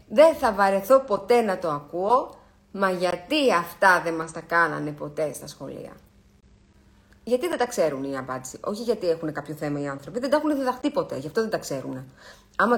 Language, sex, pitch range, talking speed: Greek, female, 160-240 Hz, 195 wpm